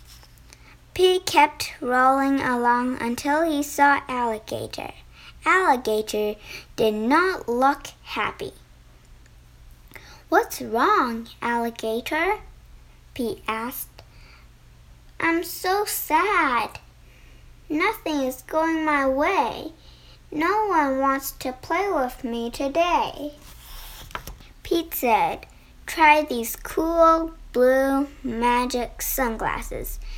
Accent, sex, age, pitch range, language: American, male, 10-29, 230-305 Hz, Chinese